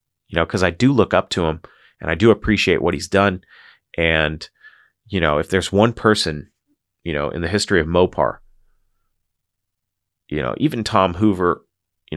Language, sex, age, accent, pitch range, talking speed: English, male, 30-49, American, 80-100 Hz, 180 wpm